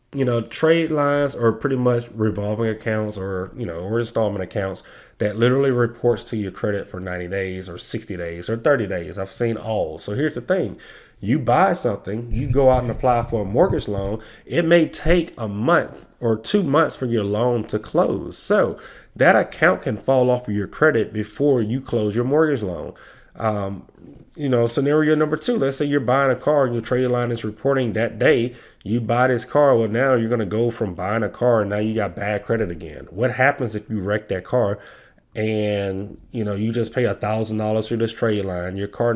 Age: 30-49